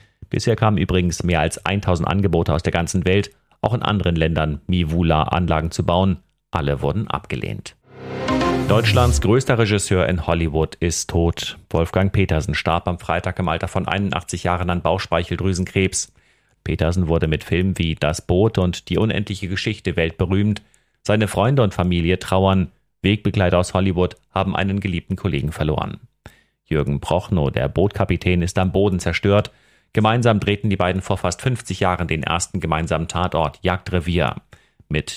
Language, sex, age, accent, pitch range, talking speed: German, male, 40-59, German, 85-100 Hz, 150 wpm